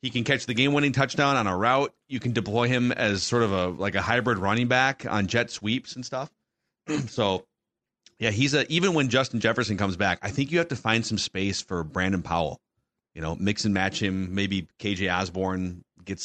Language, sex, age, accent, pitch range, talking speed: English, male, 30-49, American, 100-130 Hz, 215 wpm